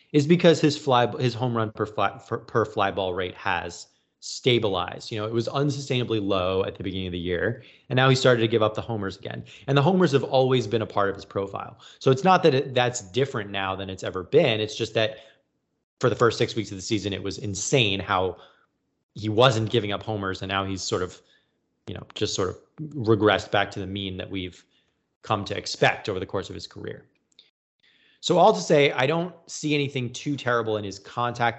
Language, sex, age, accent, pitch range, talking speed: English, male, 30-49, American, 100-130 Hz, 225 wpm